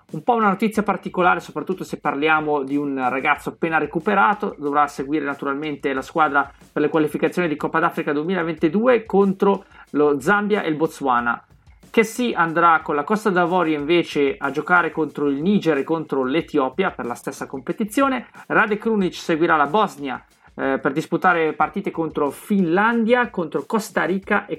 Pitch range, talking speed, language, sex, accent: 150-195 Hz, 165 wpm, Italian, male, native